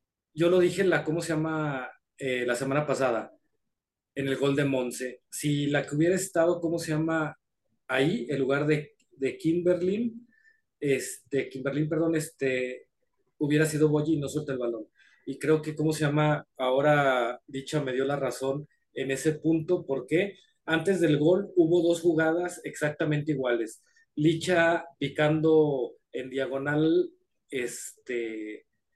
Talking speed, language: 145 wpm, Spanish